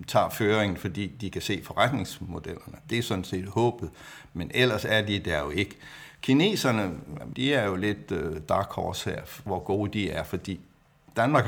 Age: 60-79